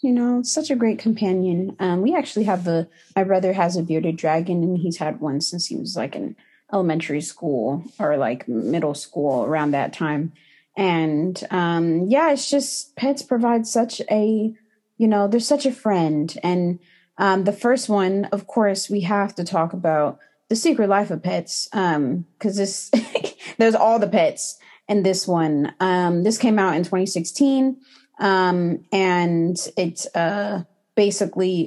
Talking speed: 165 wpm